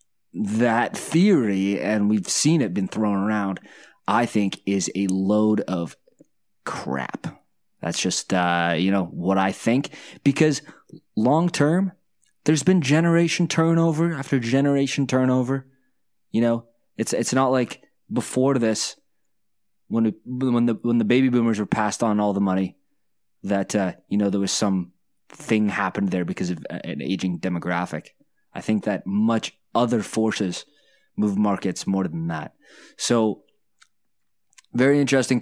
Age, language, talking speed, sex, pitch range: 20-39, English, 145 wpm, male, 95-120 Hz